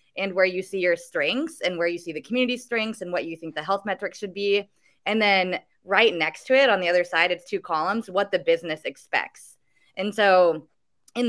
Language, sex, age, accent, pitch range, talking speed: English, female, 20-39, American, 170-230 Hz, 225 wpm